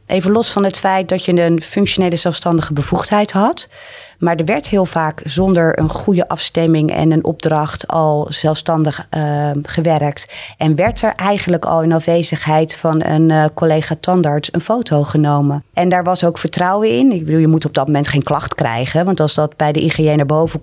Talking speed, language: 195 wpm, Dutch